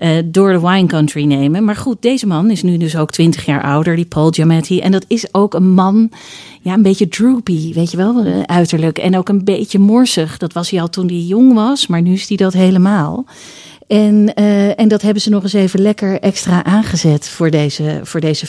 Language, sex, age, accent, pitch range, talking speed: Dutch, female, 40-59, Dutch, 165-210 Hz, 220 wpm